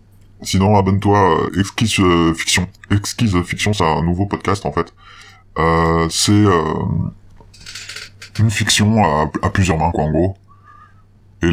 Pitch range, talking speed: 80-100 Hz, 140 wpm